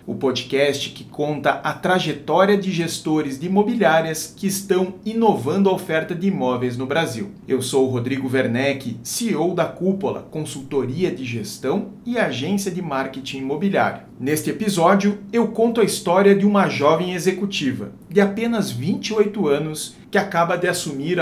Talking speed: 150 wpm